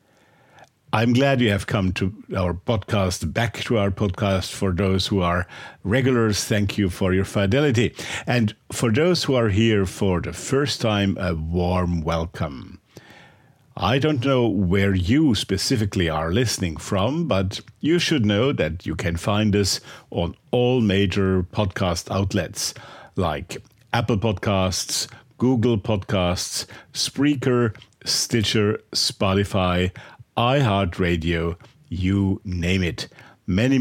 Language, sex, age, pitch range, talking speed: English, male, 50-69, 95-120 Hz, 125 wpm